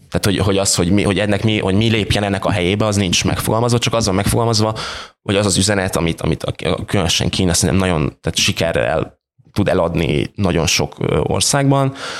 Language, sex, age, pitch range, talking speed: Hungarian, male, 20-39, 85-105 Hz, 195 wpm